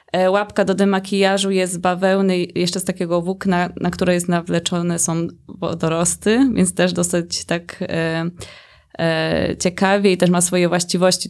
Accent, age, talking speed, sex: native, 20-39, 150 wpm, female